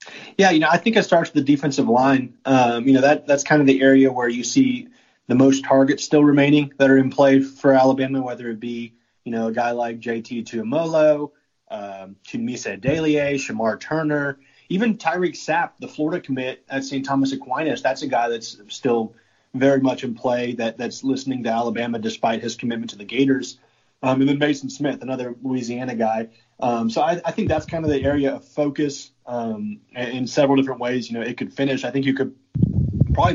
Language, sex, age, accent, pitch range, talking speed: English, male, 30-49, American, 115-135 Hz, 205 wpm